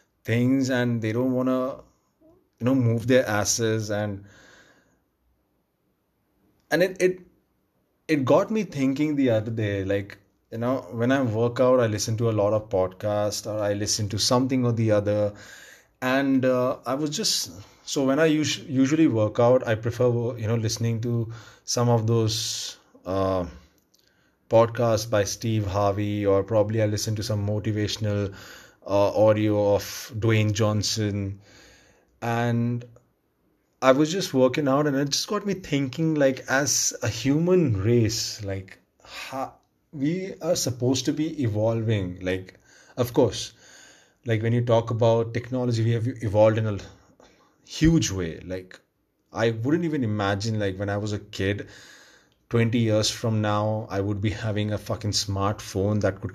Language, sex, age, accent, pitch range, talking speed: English, male, 30-49, Indian, 105-130 Hz, 155 wpm